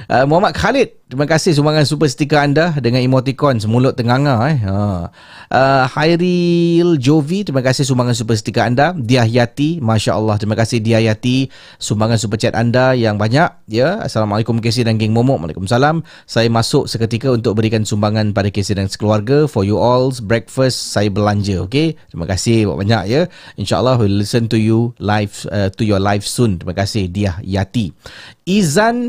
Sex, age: male, 30-49